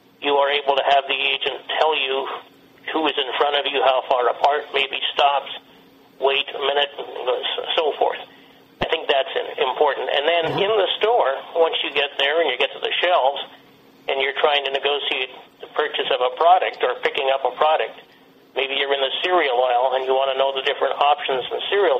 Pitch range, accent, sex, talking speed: 130-150 Hz, American, male, 205 wpm